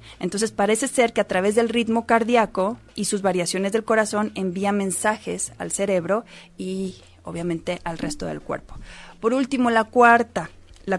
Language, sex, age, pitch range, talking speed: Spanish, female, 30-49, 180-225 Hz, 160 wpm